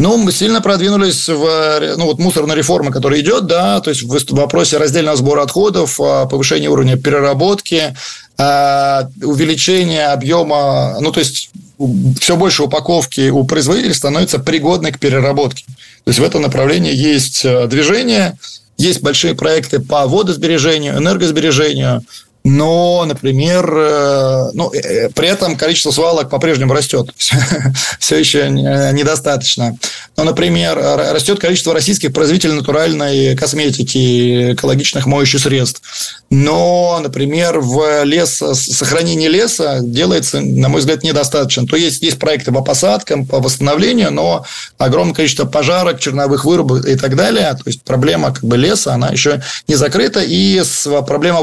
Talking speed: 130 wpm